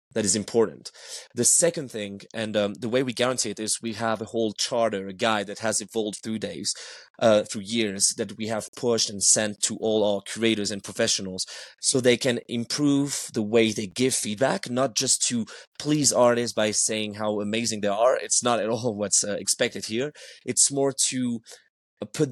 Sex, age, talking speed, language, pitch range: male, 30-49, 195 wpm, English, 105-125 Hz